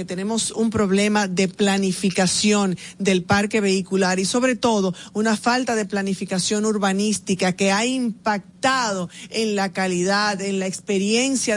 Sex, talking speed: female, 135 wpm